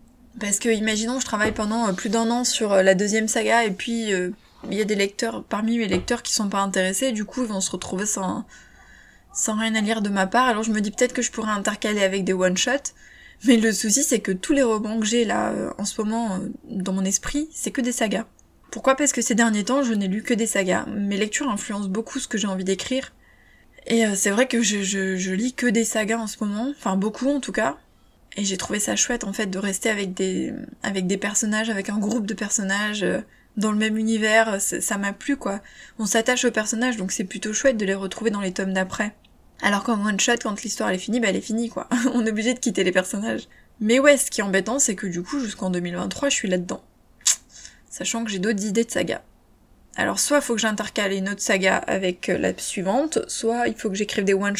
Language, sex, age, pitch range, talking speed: French, female, 20-39, 195-235 Hz, 245 wpm